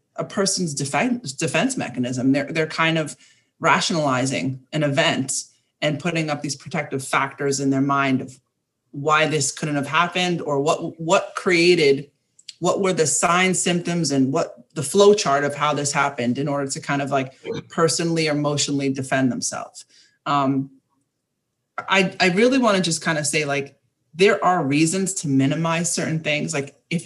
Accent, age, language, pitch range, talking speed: American, 30-49, English, 135-175 Hz, 165 wpm